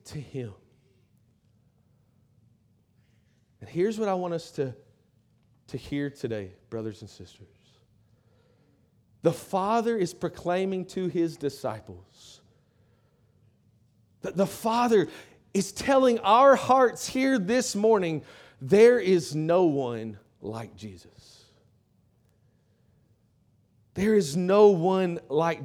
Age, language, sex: 30-49, English, male